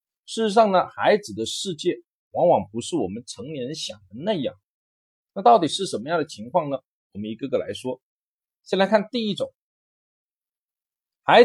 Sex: male